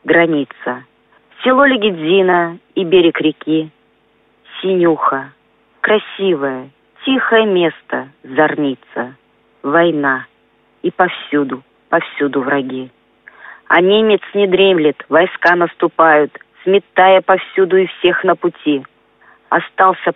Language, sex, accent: Russian, female, native